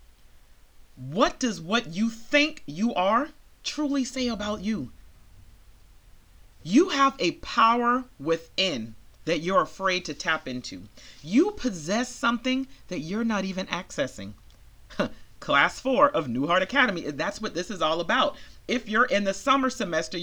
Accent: American